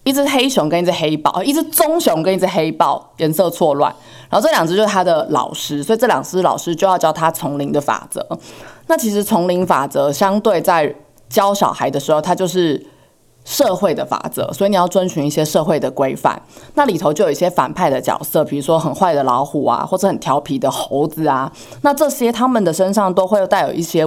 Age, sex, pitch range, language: 20-39, female, 150-200 Hz, Chinese